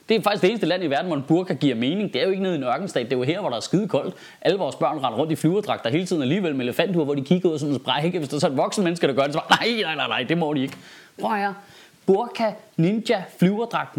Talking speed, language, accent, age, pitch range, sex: 315 wpm, Danish, native, 30-49, 150-205 Hz, male